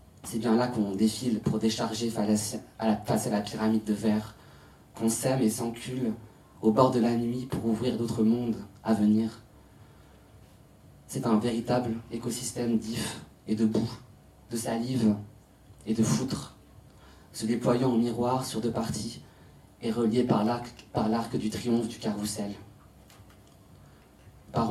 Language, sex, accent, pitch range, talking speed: French, male, French, 105-115 Hz, 145 wpm